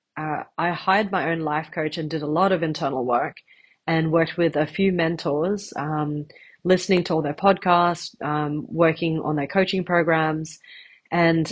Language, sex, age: English, female, 30-49